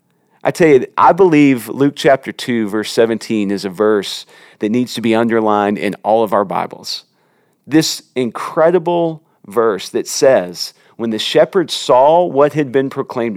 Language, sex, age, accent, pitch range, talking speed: English, male, 40-59, American, 110-150 Hz, 160 wpm